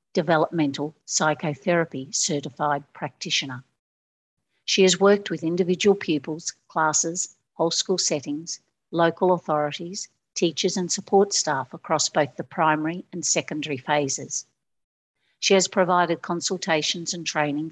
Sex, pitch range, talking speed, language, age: female, 150-180 Hz, 110 wpm, English, 60-79